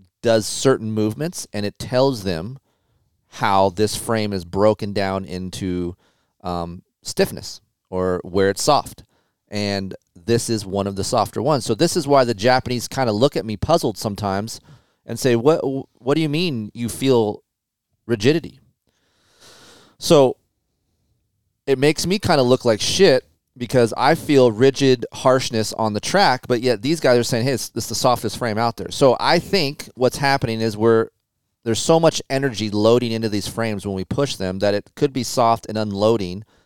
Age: 30-49